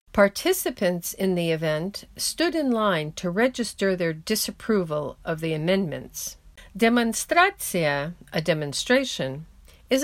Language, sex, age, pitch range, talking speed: English, female, 50-69, 165-235 Hz, 110 wpm